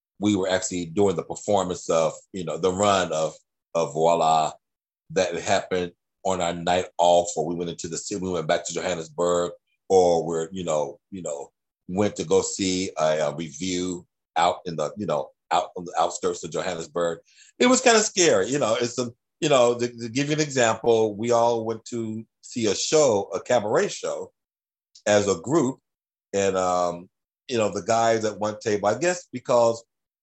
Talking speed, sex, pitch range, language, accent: 195 wpm, male, 90-115 Hz, English, American